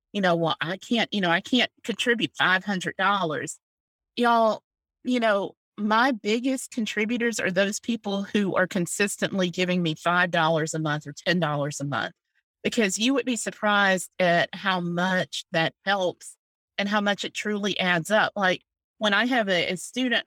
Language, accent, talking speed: English, American, 165 wpm